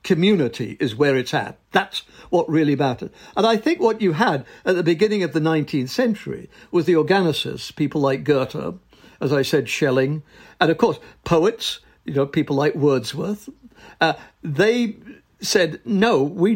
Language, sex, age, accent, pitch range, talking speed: English, male, 60-79, British, 145-205 Hz, 165 wpm